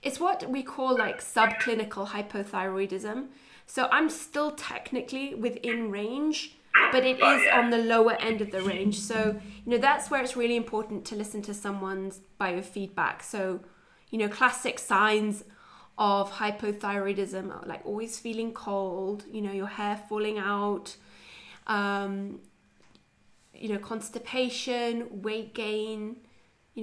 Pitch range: 205-245 Hz